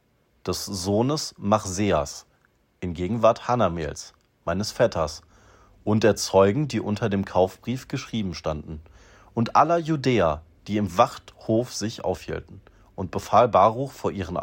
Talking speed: 125 wpm